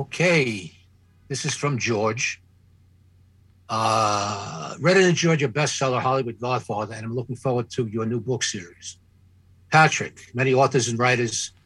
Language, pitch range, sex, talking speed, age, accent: English, 100-135 Hz, male, 140 wpm, 60-79, American